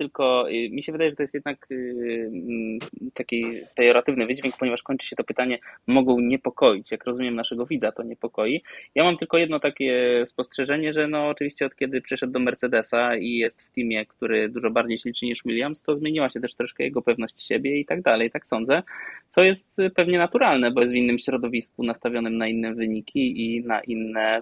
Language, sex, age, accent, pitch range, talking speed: Polish, male, 20-39, native, 120-155 Hz, 190 wpm